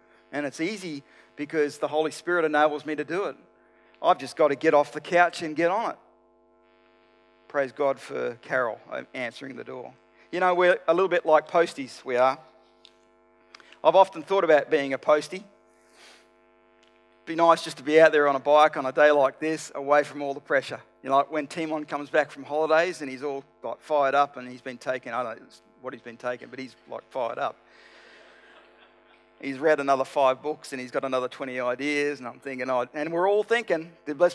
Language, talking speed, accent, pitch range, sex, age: English, 210 wpm, Australian, 140-185 Hz, male, 40-59